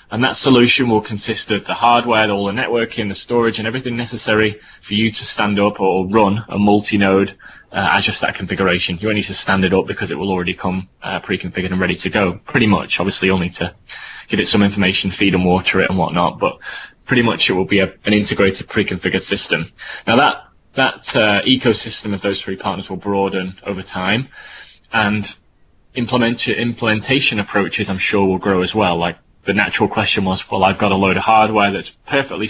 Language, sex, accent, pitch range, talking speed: English, male, British, 95-110 Hz, 205 wpm